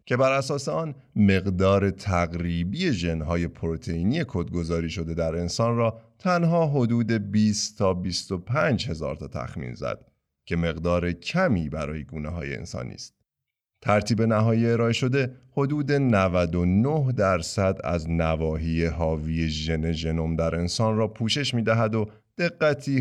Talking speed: 130 wpm